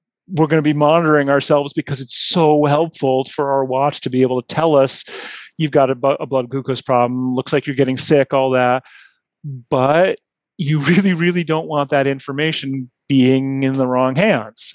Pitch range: 130-160 Hz